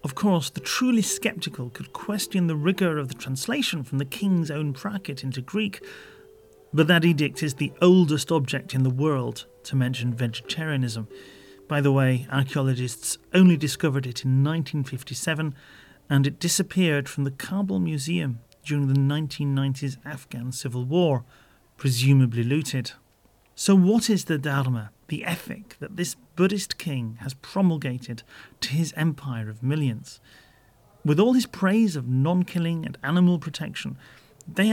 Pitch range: 135-190 Hz